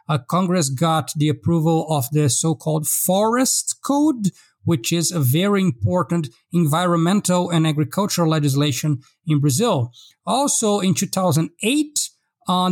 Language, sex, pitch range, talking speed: English, male, 150-190 Hz, 115 wpm